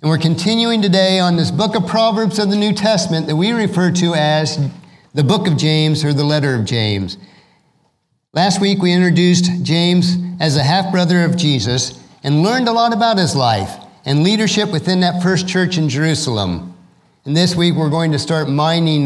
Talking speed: 190 wpm